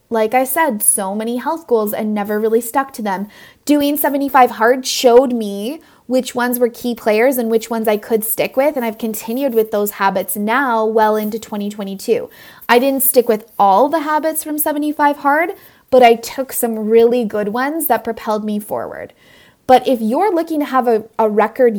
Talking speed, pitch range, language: 195 wpm, 220-260 Hz, English